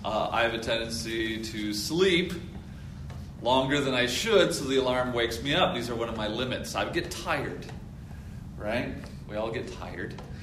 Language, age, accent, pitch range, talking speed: English, 30-49, American, 100-150 Hz, 180 wpm